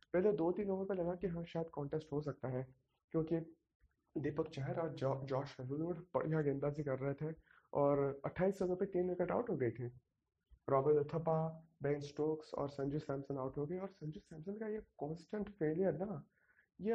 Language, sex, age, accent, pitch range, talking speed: Hindi, male, 20-39, native, 150-190 Hz, 175 wpm